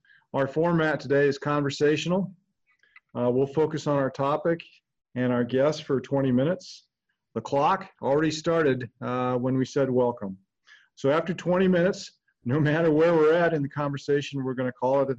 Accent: American